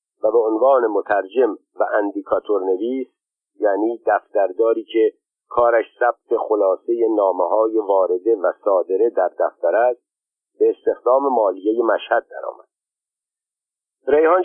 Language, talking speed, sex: Persian, 110 wpm, male